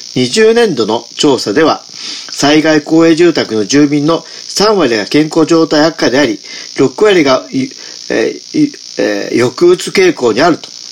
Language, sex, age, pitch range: Japanese, male, 50-69, 145-220 Hz